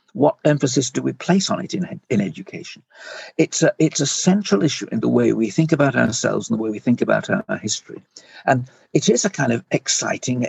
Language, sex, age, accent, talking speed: English, male, 60-79, British, 225 wpm